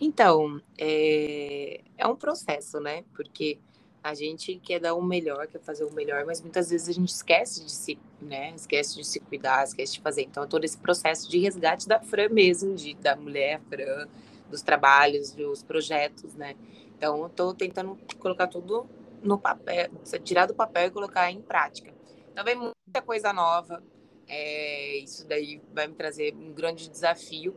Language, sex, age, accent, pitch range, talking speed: Portuguese, female, 20-39, Brazilian, 155-210 Hz, 170 wpm